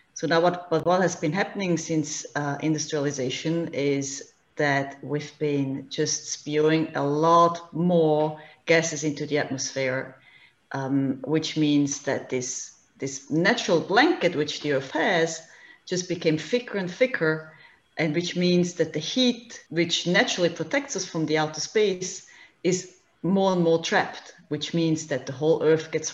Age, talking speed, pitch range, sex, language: 30-49, 155 wpm, 145-170 Hz, female, English